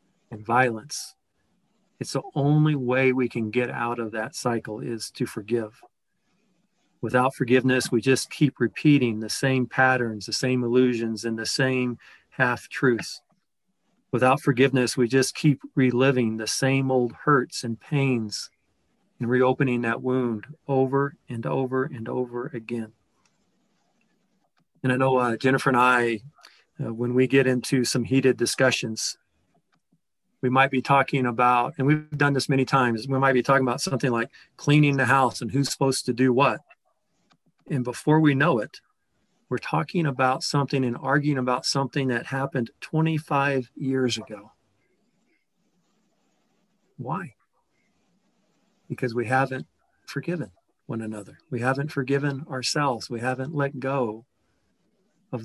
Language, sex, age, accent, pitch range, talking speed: English, male, 40-59, American, 120-140 Hz, 140 wpm